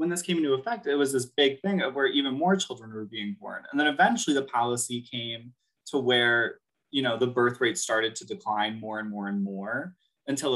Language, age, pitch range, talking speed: English, 20-39, 115-165 Hz, 225 wpm